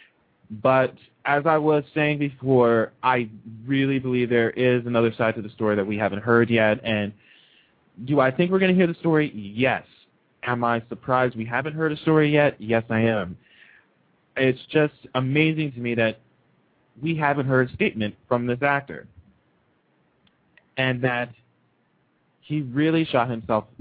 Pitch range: 110-130 Hz